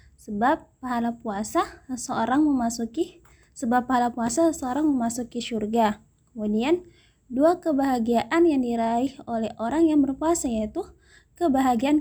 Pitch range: 240-300 Hz